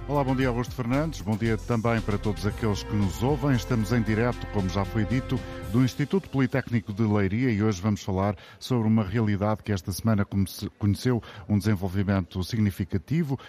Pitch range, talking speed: 105-125 Hz, 180 wpm